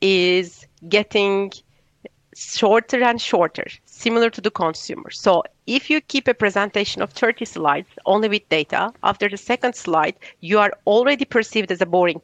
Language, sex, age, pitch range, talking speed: English, female, 40-59, 195-245 Hz, 155 wpm